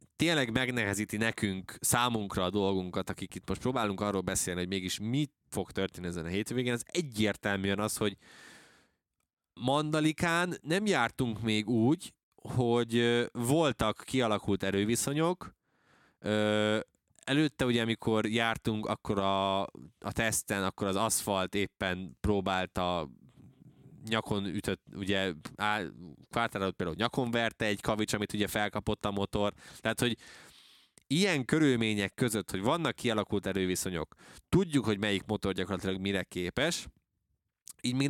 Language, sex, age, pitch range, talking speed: Hungarian, male, 20-39, 95-125 Hz, 125 wpm